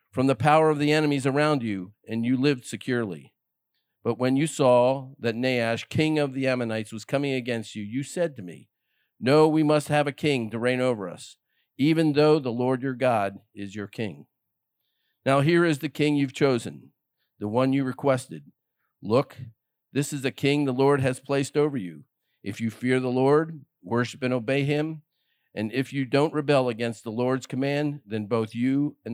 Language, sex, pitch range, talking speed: English, male, 115-140 Hz, 190 wpm